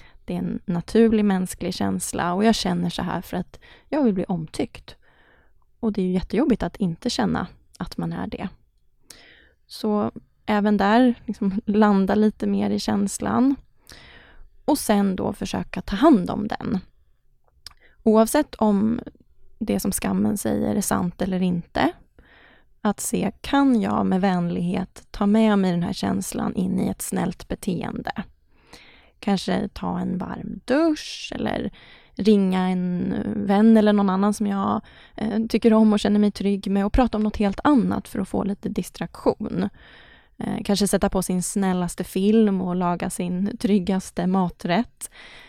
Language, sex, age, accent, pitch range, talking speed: English, female, 20-39, Swedish, 190-225 Hz, 155 wpm